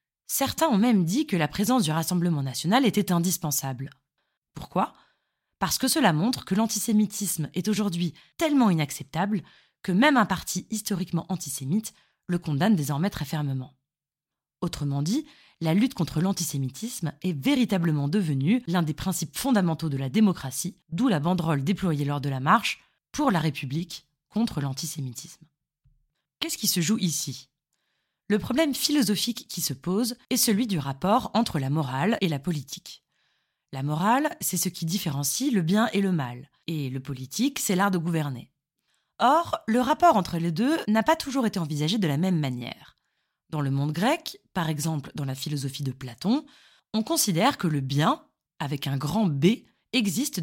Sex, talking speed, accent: female, 165 wpm, French